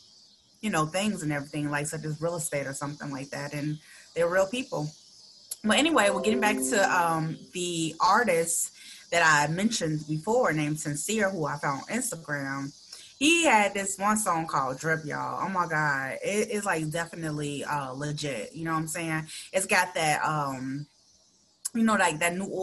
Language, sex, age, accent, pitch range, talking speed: English, female, 20-39, American, 155-205 Hz, 190 wpm